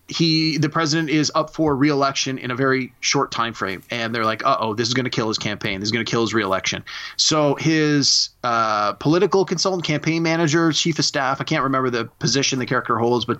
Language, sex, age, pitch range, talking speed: English, male, 30-49, 130-165 Hz, 220 wpm